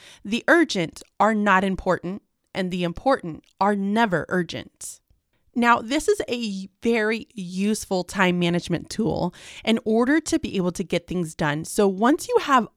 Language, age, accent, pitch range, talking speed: English, 30-49, American, 180-235 Hz, 155 wpm